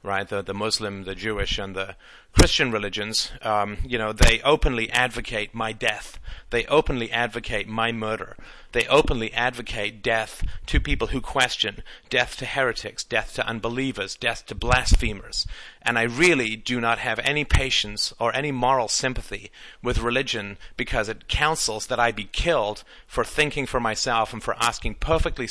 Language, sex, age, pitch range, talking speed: English, male, 40-59, 105-125 Hz, 160 wpm